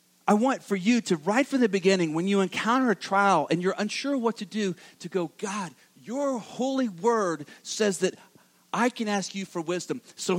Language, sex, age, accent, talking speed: English, male, 40-59, American, 200 wpm